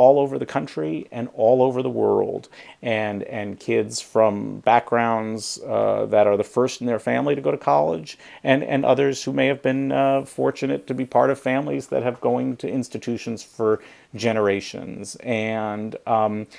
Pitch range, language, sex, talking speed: 110-135 Hz, English, male, 175 wpm